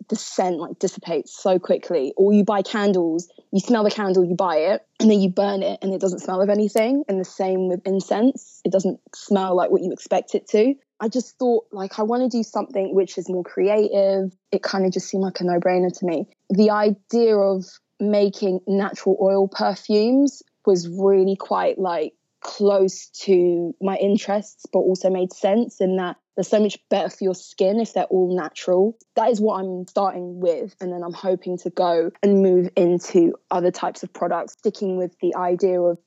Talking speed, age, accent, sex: 200 wpm, 20-39, British, female